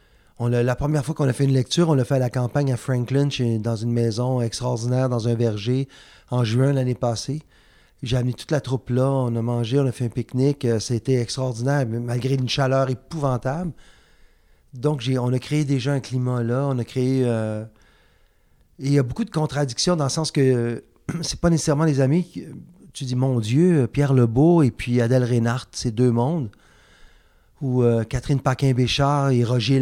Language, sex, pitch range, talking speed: French, male, 115-135 Hz, 200 wpm